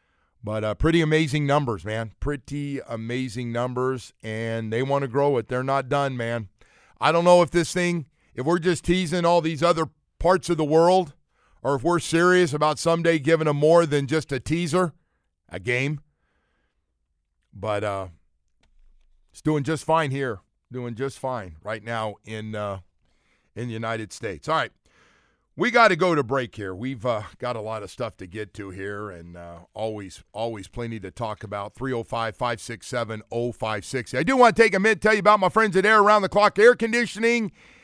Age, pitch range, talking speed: 50-69, 110-160 Hz, 185 wpm